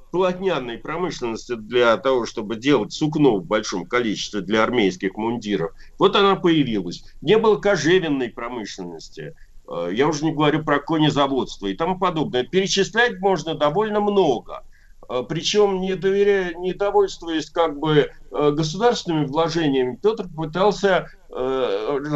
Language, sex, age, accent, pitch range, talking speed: Russian, male, 50-69, native, 130-180 Hz, 120 wpm